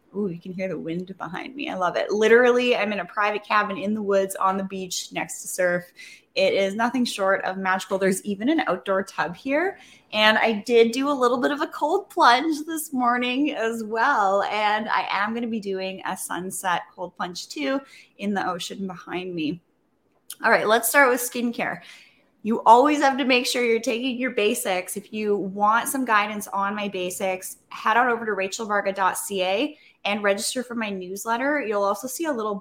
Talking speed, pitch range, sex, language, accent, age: 200 wpm, 190-245 Hz, female, English, American, 20-39